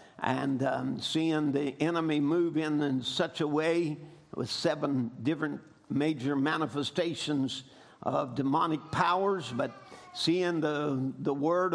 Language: English